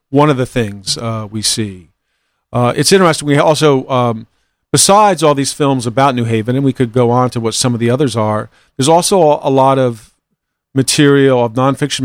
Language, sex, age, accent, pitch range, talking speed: English, male, 50-69, American, 115-135 Hz, 200 wpm